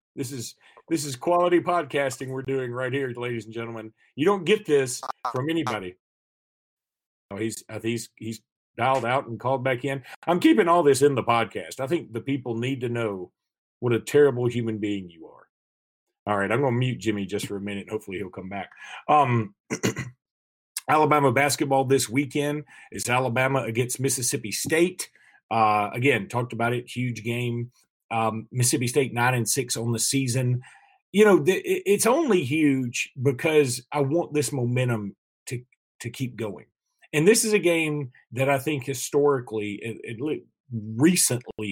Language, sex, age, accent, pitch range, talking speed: English, male, 40-59, American, 115-150 Hz, 170 wpm